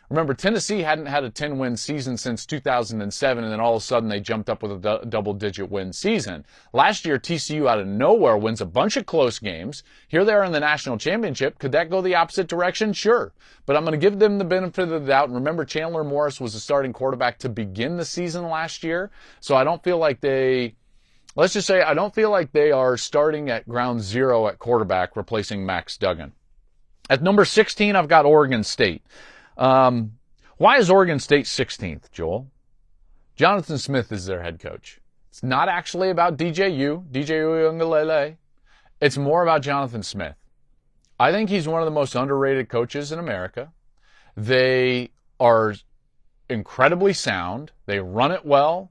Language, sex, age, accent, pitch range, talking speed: English, male, 30-49, American, 120-170 Hz, 185 wpm